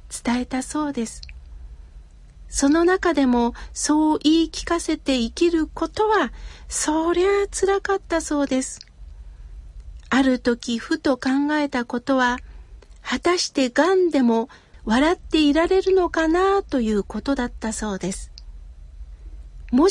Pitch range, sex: 230-305 Hz, female